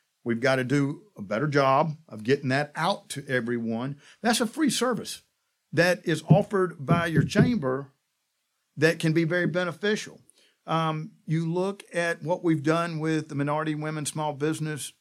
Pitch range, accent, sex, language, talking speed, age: 140-165 Hz, American, male, English, 165 wpm, 50-69